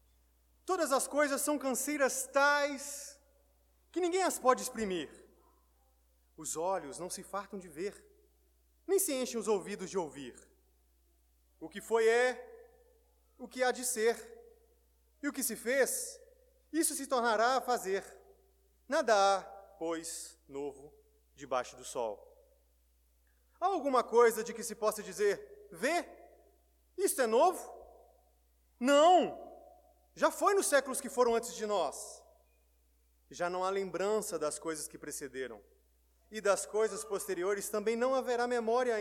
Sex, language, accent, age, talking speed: male, Portuguese, Brazilian, 30-49, 135 wpm